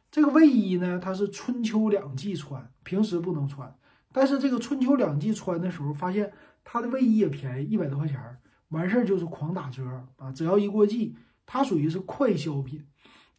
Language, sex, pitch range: Chinese, male, 150-205 Hz